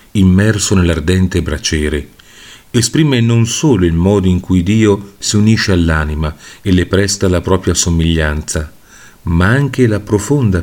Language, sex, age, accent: Italian, male, 40-59, native